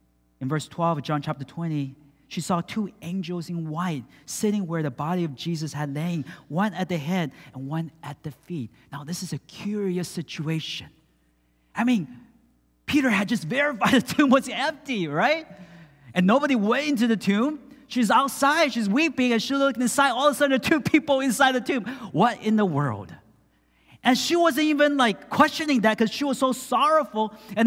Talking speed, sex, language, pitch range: 195 wpm, male, English, 155-240 Hz